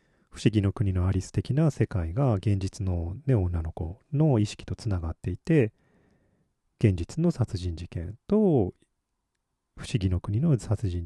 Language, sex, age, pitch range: Japanese, male, 40-59, 95-135 Hz